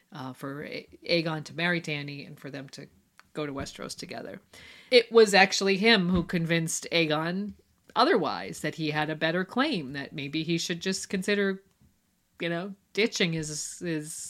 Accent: American